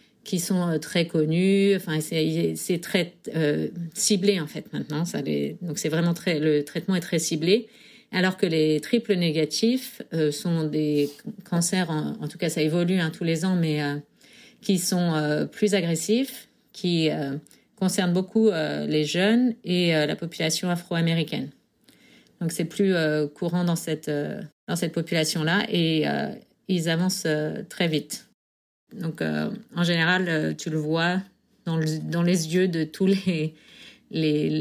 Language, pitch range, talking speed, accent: French, 155-190 Hz, 165 wpm, French